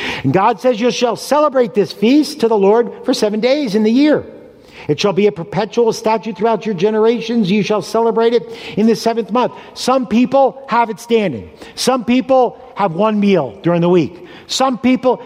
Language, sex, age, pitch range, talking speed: English, male, 50-69, 175-240 Hz, 195 wpm